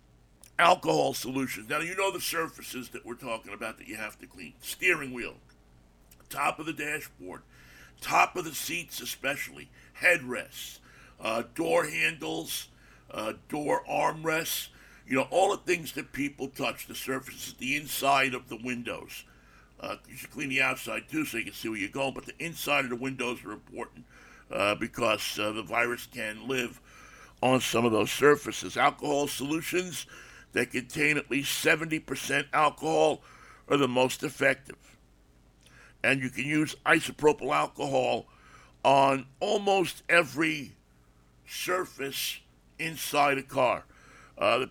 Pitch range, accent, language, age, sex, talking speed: 105-145 Hz, American, English, 60-79, male, 150 wpm